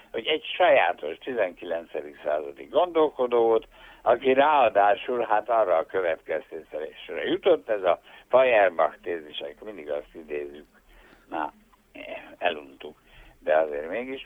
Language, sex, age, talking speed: Hungarian, male, 60-79, 110 wpm